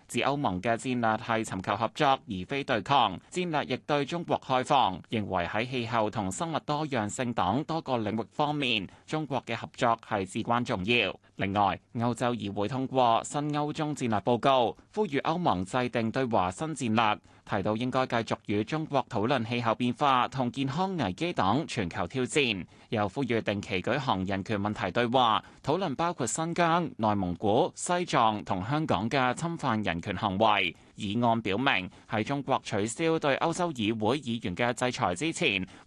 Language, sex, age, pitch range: Chinese, male, 20-39, 105-145 Hz